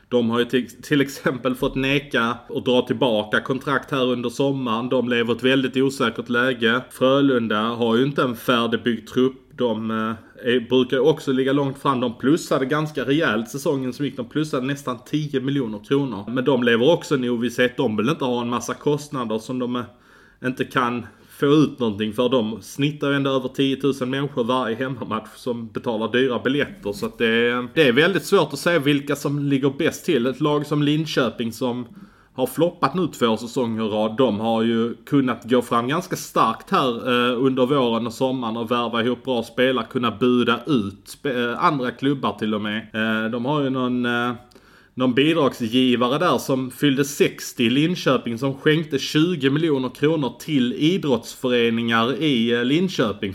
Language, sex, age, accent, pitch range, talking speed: Swedish, male, 20-39, Norwegian, 120-140 Hz, 180 wpm